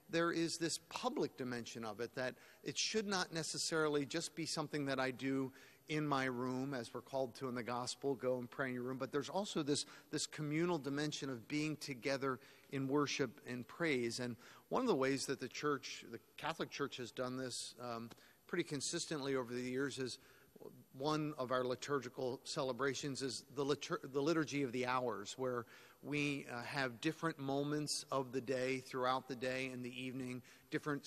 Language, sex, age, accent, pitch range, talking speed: English, male, 50-69, American, 125-150 Hz, 185 wpm